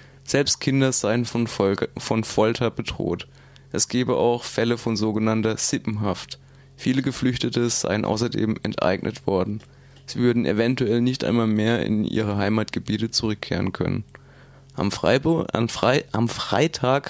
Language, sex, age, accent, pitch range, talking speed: German, male, 20-39, German, 115-135 Hz, 120 wpm